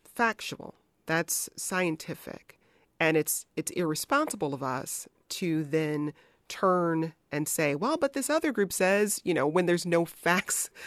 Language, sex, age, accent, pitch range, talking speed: English, female, 30-49, American, 155-200 Hz, 145 wpm